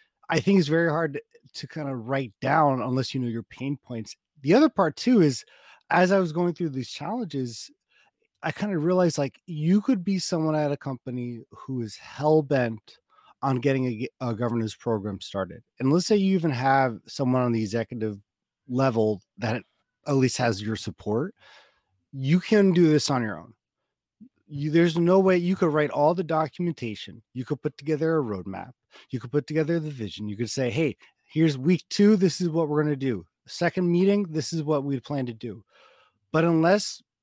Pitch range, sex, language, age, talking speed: 125-165 Hz, male, English, 30-49, 200 wpm